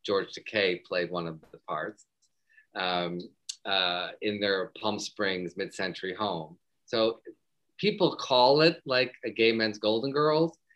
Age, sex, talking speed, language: 40-59, male, 140 wpm, English